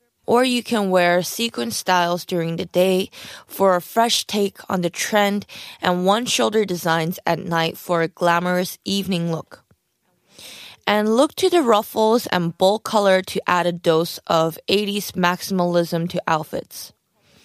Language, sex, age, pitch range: Korean, female, 20-39, 170-215 Hz